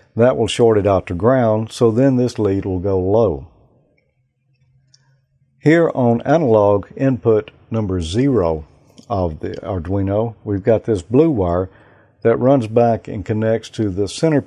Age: 50-69